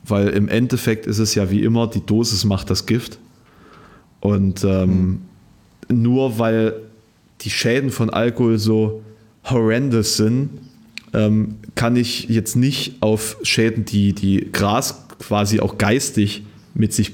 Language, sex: German, male